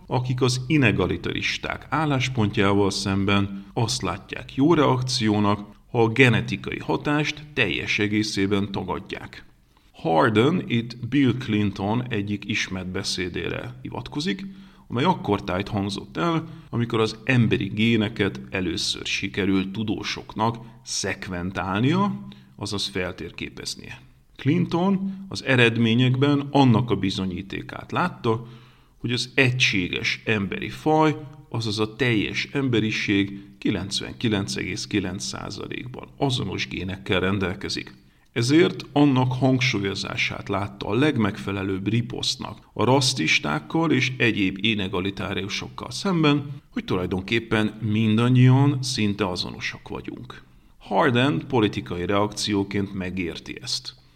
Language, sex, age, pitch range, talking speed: Hungarian, male, 40-59, 100-130 Hz, 90 wpm